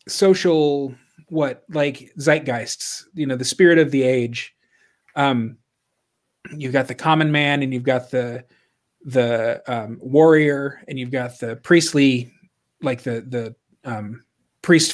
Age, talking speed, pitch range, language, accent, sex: 30-49, 135 wpm, 125-160 Hz, English, American, male